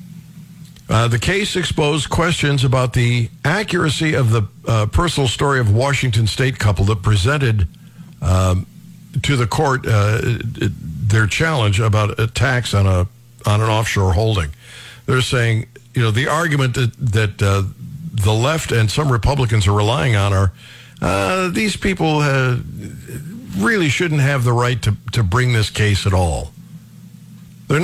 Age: 60-79